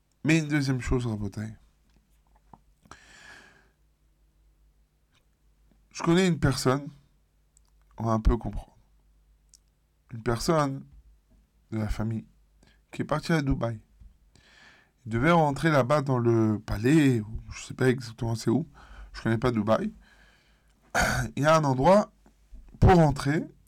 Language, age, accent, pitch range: French, 20-39, French, 100-145 Hz